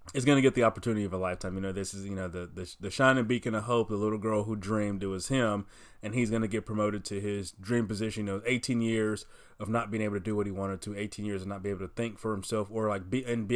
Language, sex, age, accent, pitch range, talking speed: English, male, 20-39, American, 100-115 Hz, 305 wpm